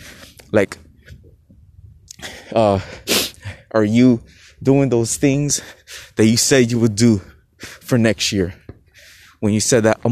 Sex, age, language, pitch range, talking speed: male, 20-39, English, 95-115 Hz, 125 wpm